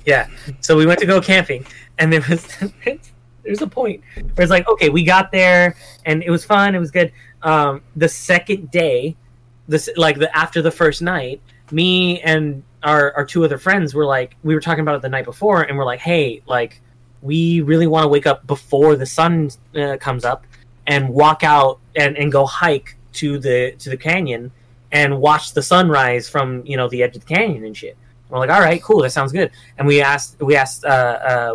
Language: English